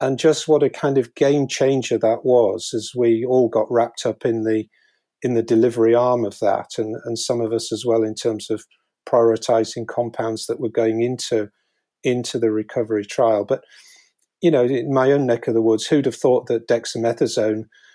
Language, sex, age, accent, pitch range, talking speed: English, male, 40-59, British, 115-130 Hz, 195 wpm